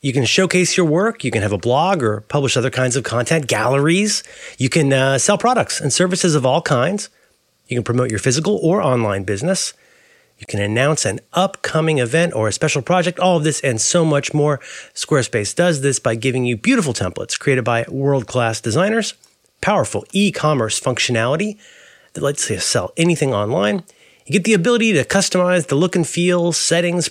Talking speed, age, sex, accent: 185 wpm, 30-49, male, American